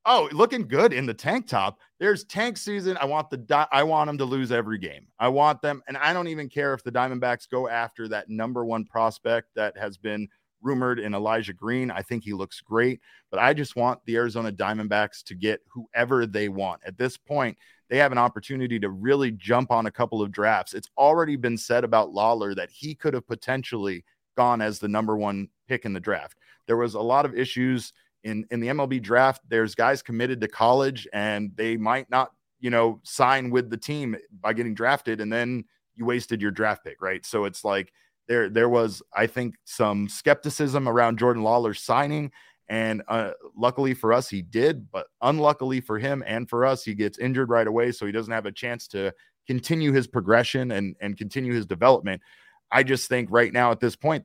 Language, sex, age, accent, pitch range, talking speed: English, male, 30-49, American, 110-130 Hz, 210 wpm